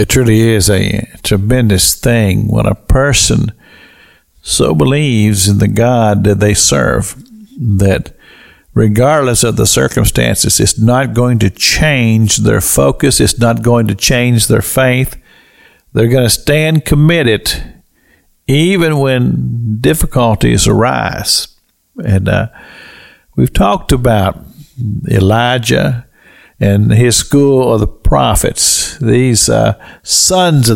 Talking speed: 120 wpm